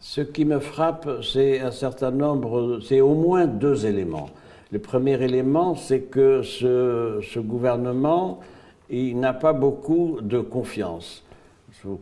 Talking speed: 140 wpm